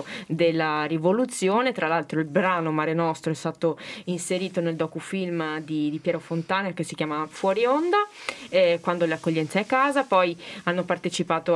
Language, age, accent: Italian, 20-39, native